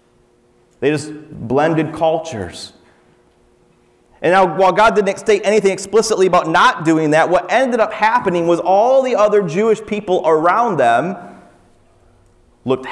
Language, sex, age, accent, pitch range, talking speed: English, male, 30-49, American, 130-175 Hz, 135 wpm